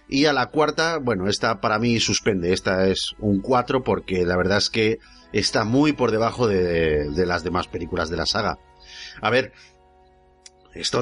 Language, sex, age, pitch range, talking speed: Spanish, male, 40-59, 100-135 Hz, 185 wpm